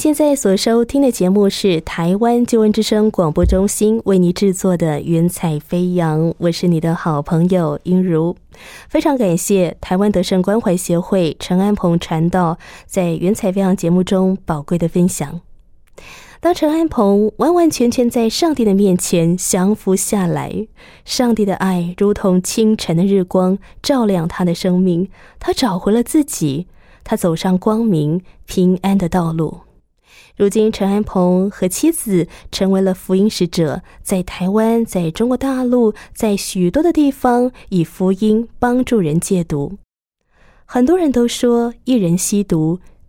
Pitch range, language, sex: 180-230 Hz, Chinese, female